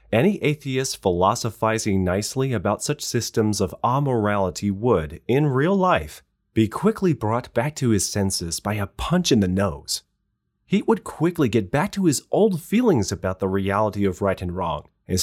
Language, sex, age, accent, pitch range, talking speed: English, male, 30-49, American, 100-155 Hz, 170 wpm